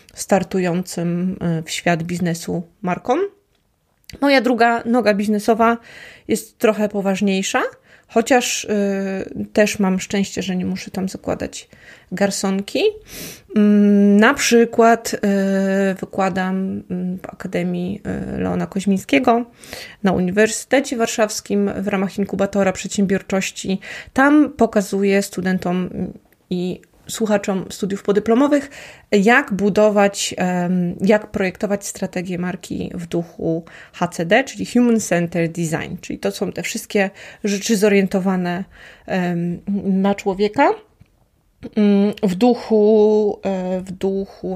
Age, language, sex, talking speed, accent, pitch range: 20-39, Polish, female, 90 wpm, native, 185-220 Hz